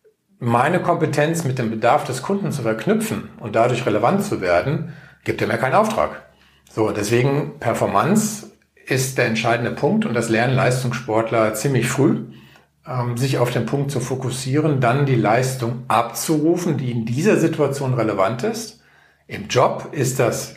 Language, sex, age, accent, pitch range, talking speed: German, male, 50-69, German, 115-155 Hz, 155 wpm